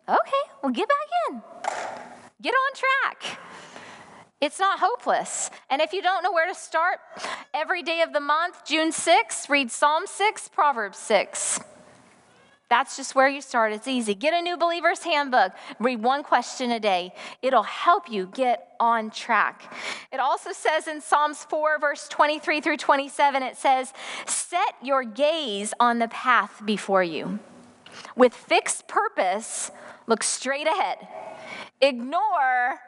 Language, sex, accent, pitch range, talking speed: English, female, American, 215-310 Hz, 150 wpm